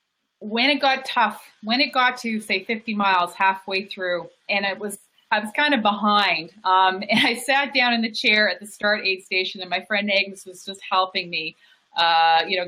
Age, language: 30-49, English